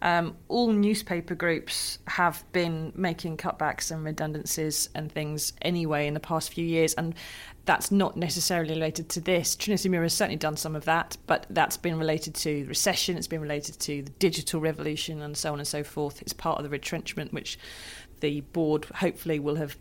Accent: British